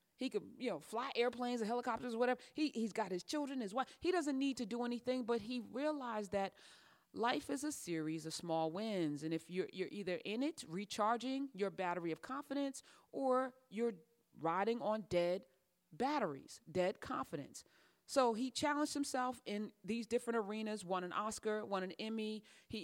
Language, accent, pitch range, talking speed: English, American, 160-235 Hz, 180 wpm